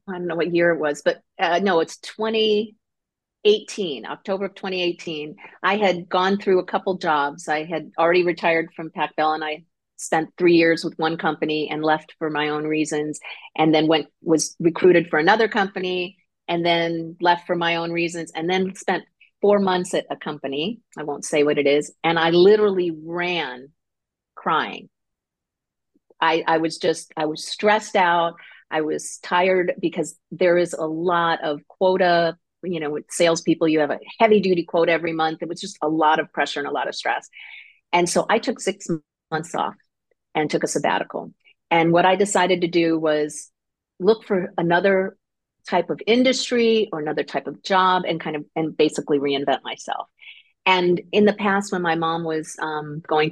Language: English